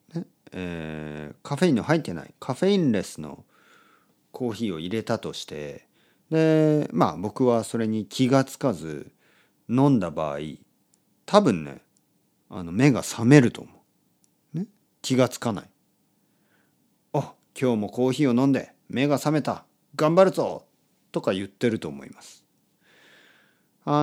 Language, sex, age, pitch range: Japanese, male, 40-59, 90-145 Hz